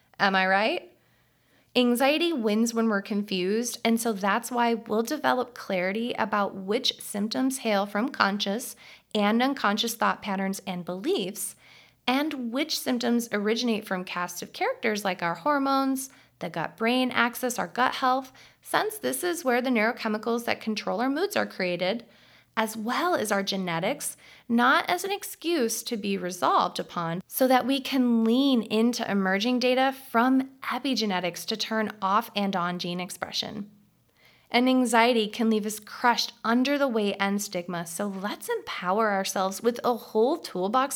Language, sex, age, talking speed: English, female, 20-39, 155 wpm